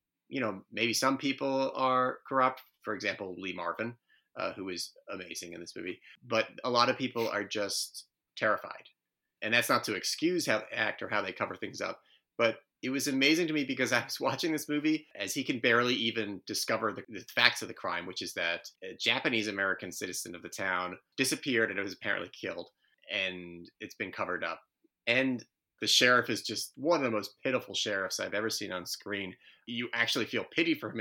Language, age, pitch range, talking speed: English, 30-49, 105-135 Hz, 205 wpm